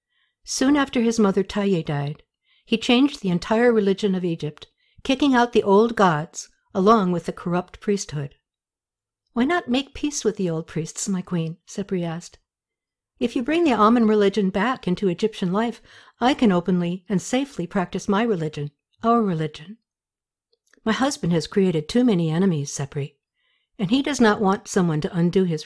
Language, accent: English, American